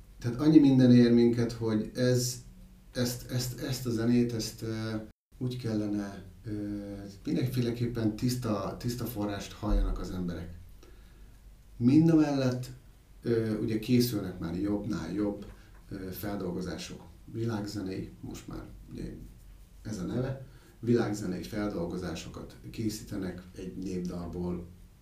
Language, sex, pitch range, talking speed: Hungarian, male, 100-125 Hz, 115 wpm